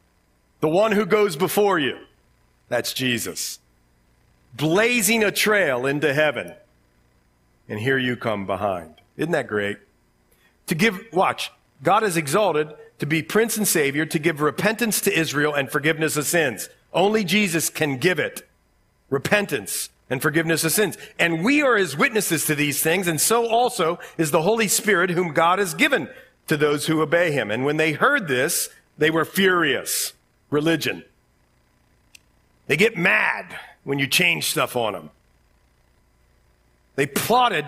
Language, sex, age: English, male, 50-69